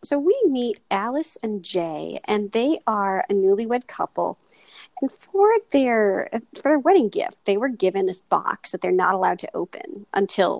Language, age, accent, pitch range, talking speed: English, 40-59, American, 195-320 Hz, 175 wpm